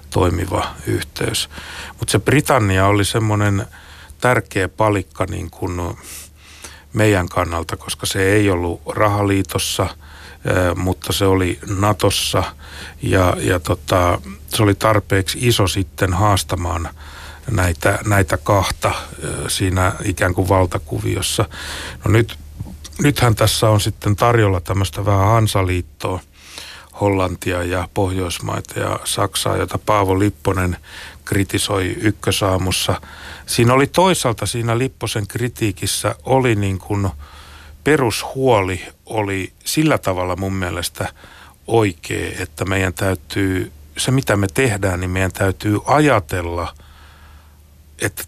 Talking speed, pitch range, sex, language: 105 wpm, 85-105 Hz, male, Finnish